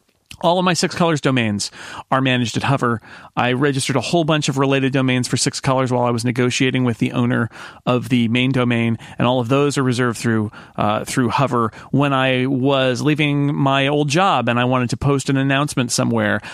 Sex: male